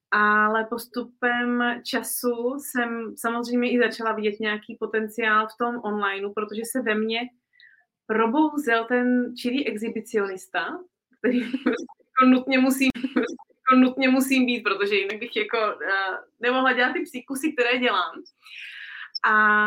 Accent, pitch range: native, 210-245 Hz